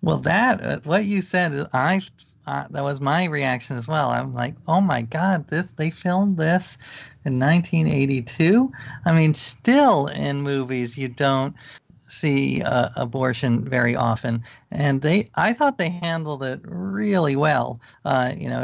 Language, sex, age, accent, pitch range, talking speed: English, male, 40-59, American, 125-160 Hz, 150 wpm